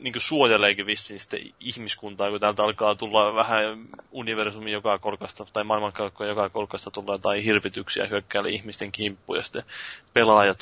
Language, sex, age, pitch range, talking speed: Finnish, male, 20-39, 100-110 Hz, 145 wpm